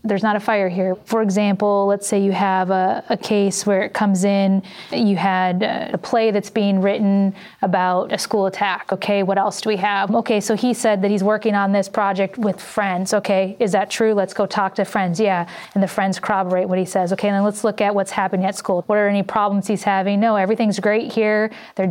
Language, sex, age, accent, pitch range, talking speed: English, female, 30-49, American, 195-220 Hz, 230 wpm